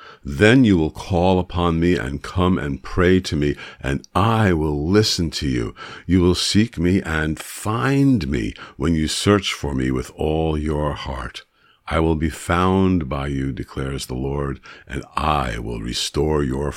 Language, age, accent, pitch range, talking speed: English, 50-69, American, 80-105 Hz, 170 wpm